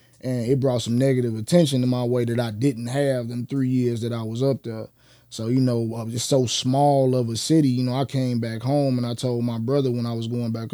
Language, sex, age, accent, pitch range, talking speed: English, male, 20-39, American, 115-130 Hz, 270 wpm